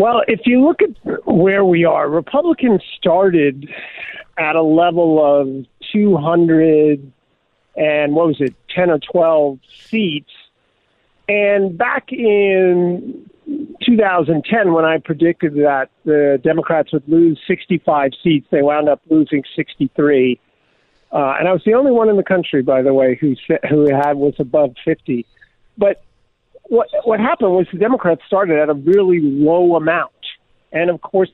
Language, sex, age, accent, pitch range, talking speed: English, male, 50-69, American, 150-190 Hz, 145 wpm